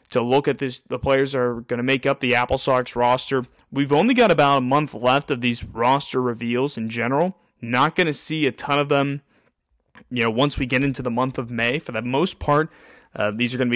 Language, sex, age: English, male, 30-49